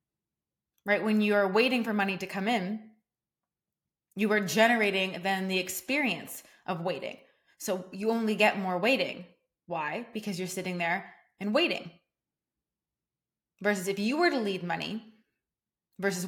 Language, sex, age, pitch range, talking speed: English, female, 20-39, 185-215 Hz, 145 wpm